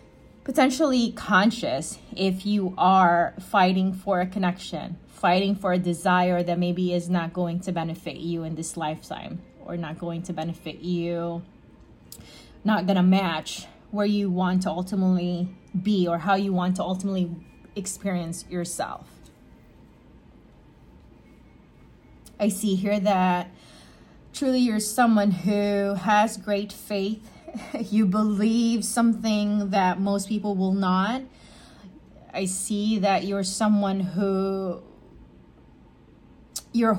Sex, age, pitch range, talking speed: female, 20-39, 185-215 Hz, 120 wpm